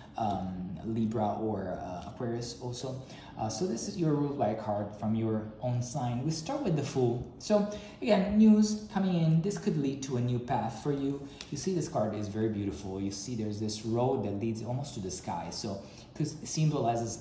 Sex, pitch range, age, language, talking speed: male, 105-140 Hz, 20-39, English, 200 wpm